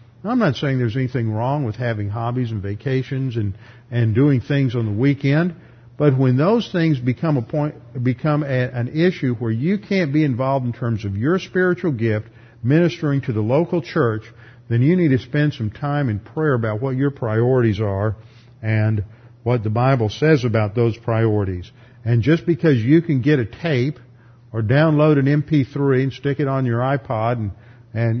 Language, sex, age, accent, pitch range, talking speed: English, male, 50-69, American, 120-150 Hz, 185 wpm